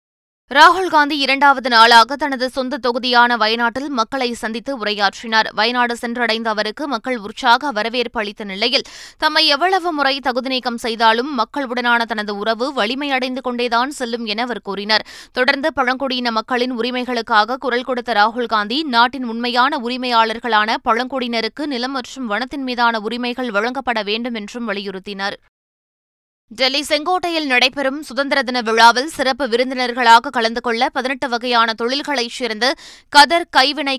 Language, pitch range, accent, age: Tamil, 230-275 Hz, native, 20-39